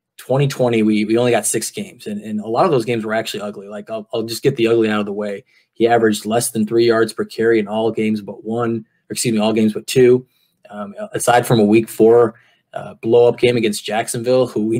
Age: 20-39